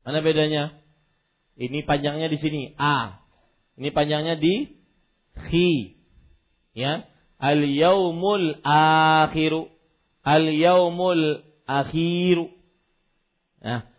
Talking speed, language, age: 75 wpm, Malay, 40-59